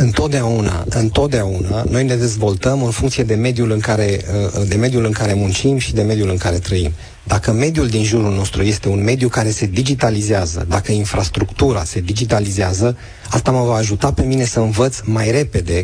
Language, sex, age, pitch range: Romanian, male, 30-49, 105-125 Hz